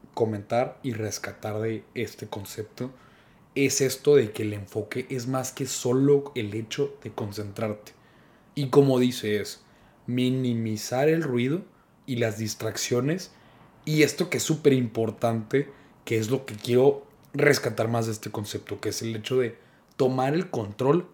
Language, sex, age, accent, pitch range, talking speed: Spanish, male, 30-49, Mexican, 115-145 Hz, 155 wpm